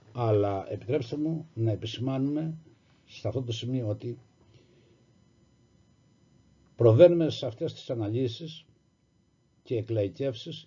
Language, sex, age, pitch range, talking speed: Greek, male, 60-79, 115-155 Hz, 95 wpm